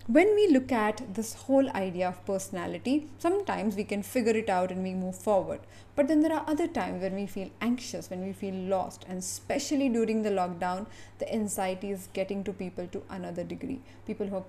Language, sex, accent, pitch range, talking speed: English, female, Indian, 185-235 Hz, 205 wpm